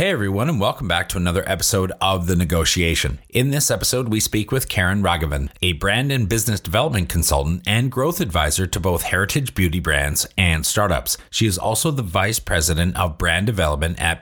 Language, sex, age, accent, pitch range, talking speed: English, male, 30-49, American, 85-115 Hz, 190 wpm